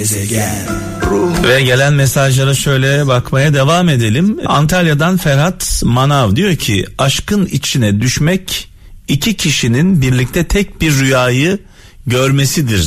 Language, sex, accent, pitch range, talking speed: Turkish, male, native, 95-145 Hz, 105 wpm